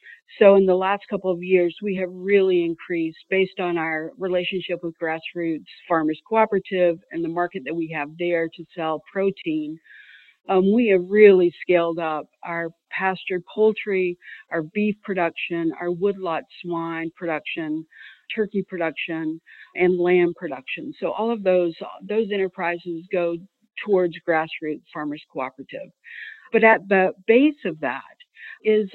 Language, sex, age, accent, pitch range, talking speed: English, female, 50-69, American, 170-200 Hz, 140 wpm